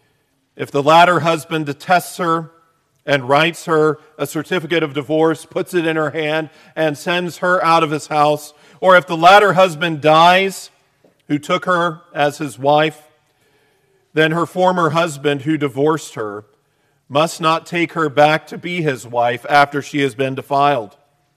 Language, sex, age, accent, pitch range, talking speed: English, male, 40-59, American, 145-175 Hz, 165 wpm